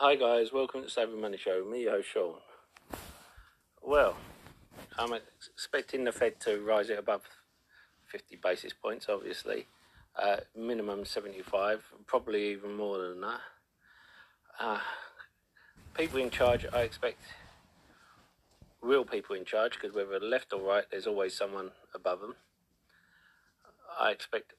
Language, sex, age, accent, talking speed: English, male, 40-59, British, 130 wpm